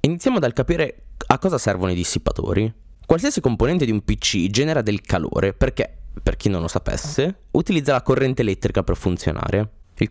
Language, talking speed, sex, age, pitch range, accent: Italian, 170 wpm, male, 20-39, 100-145 Hz, native